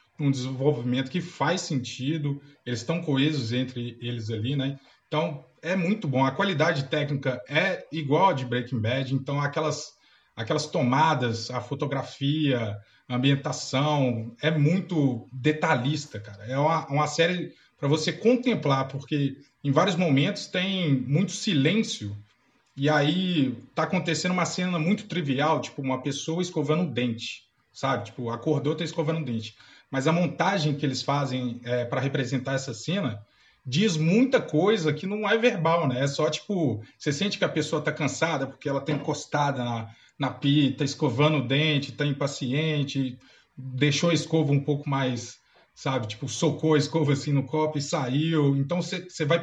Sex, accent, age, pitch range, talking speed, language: male, Brazilian, 20-39, 130-160 Hz, 160 wpm, Portuguese